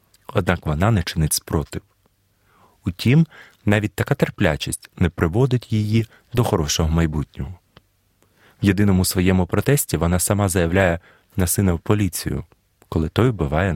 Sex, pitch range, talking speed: male, 85-110 Hz, 125 wpm